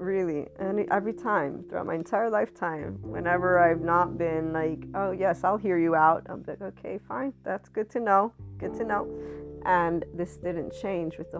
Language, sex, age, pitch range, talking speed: English, female, 30-49, 150-175 Hz, 185 wpm